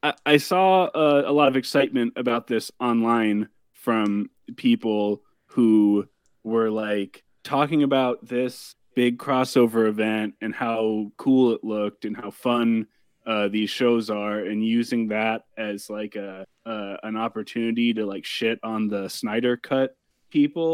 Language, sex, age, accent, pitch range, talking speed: English, male, 20-39, American, 110-135 Hz, 145 wpm